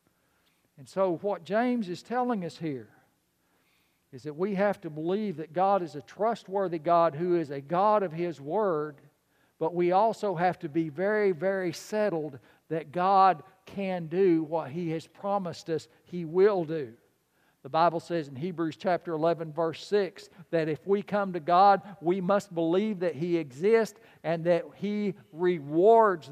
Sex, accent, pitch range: male, American, 165-230 Hz